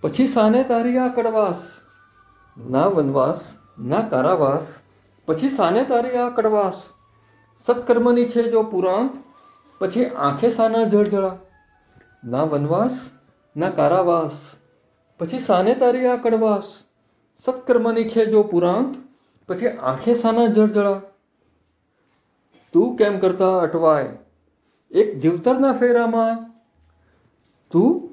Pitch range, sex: 135-220 Hz, male